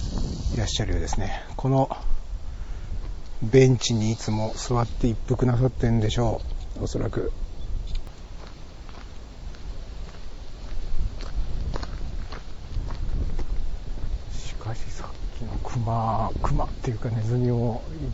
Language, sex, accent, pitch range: Japanese, male, native, 95-140 Hz